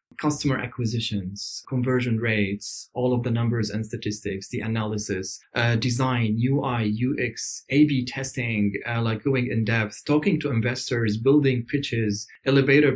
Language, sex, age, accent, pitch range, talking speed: English, male, 20-39, German, 120-140 Hz, 140 wpm